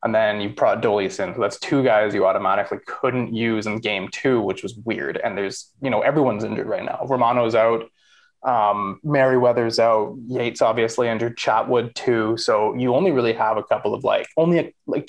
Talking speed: 195 wpm